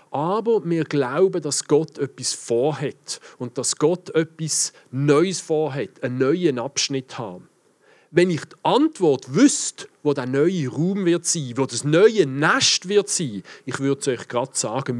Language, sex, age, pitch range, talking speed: German, male, 40-59, 135-180 Hz, 160 wpm